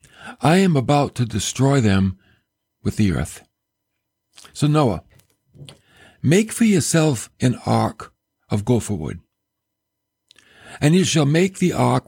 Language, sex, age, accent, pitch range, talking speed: English, male, 60-79, American, 100-140 Hz, 125 wpm